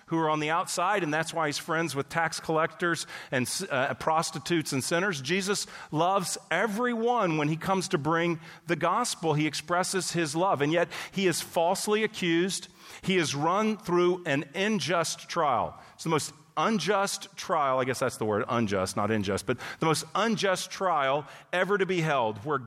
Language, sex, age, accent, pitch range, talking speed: English, male, 40-59, American, 140-185 Hz, 180 wpm